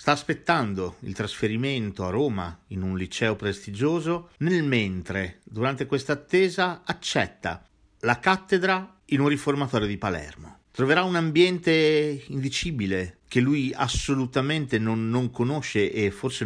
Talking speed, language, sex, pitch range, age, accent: 130 wpm, Italian, male, 100-140 Hz, 50-69, native